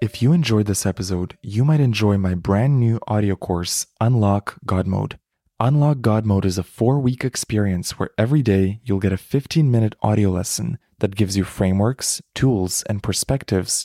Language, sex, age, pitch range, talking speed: English, male, 20-39, 95-115 Hz, 170 wpm